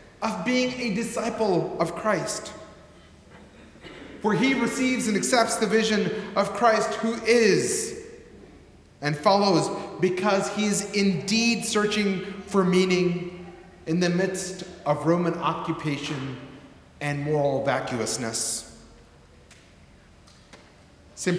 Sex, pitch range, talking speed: male, 165-230 Hz, 100 wpm